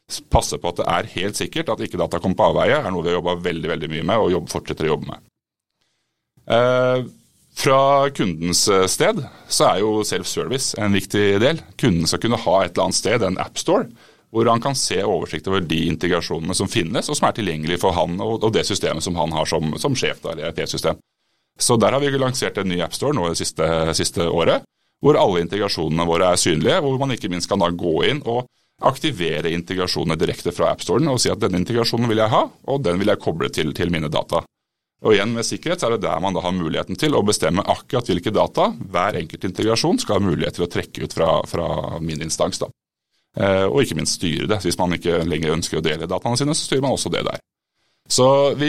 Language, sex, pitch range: English, male, 85-120 Hz